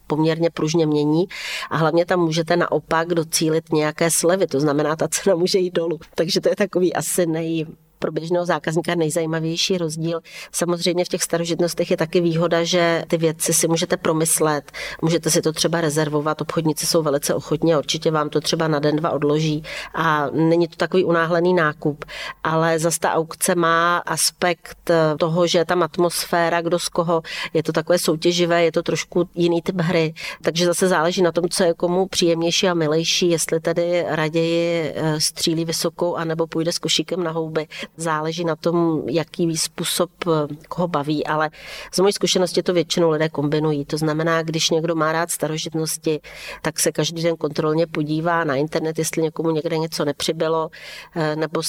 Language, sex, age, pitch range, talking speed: Czech, female, 40-59, 155-170 Hz, 170 wpm